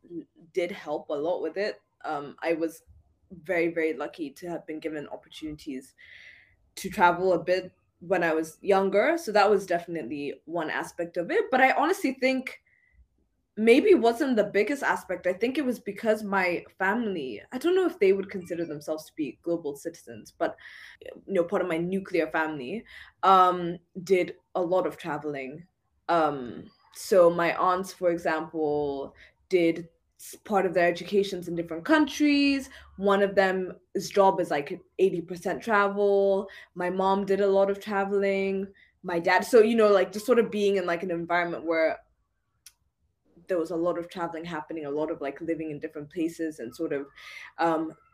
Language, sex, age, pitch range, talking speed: English, female, 20-39, 170-210 Hz, 170 wpm